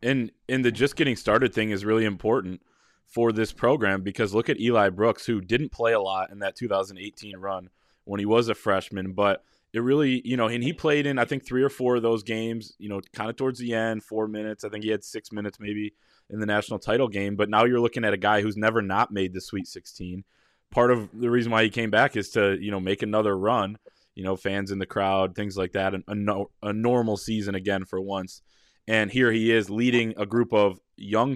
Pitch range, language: 100-115 Hz, English